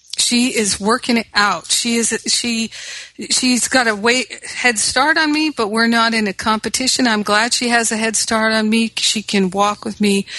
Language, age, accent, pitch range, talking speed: English, 50-69, American, 195-225 Hz, 210 wpm